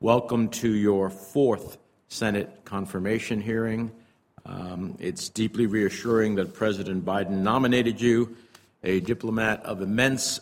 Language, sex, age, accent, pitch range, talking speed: English, male, 60-79, American, 100-120 Hz, 115 wpm